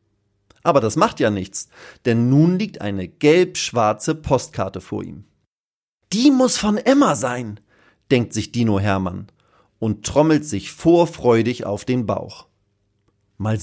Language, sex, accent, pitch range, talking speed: German, male, German, 105-165 Hz, 130 wpm